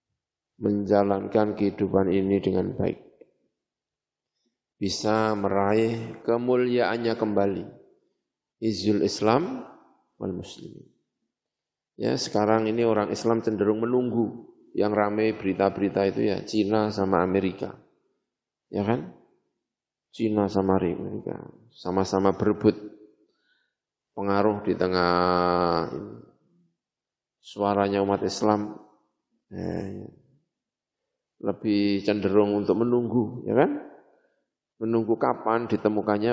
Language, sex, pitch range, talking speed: Indonesian, male, 100-115 Hz, 90 wpm